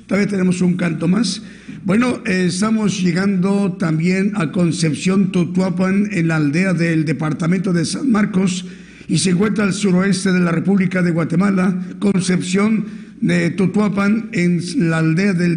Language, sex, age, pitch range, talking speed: Spanish, male, 50-69, 180-205 Hz, 145 wpm